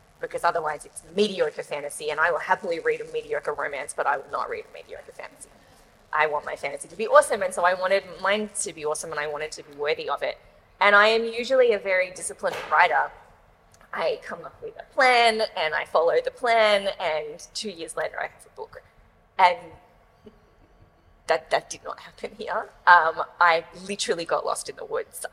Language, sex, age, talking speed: English, female, 20-39, 205 wpm